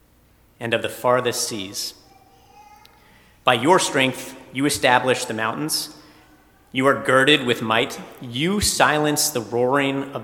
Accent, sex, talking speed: American, male, 130 wpm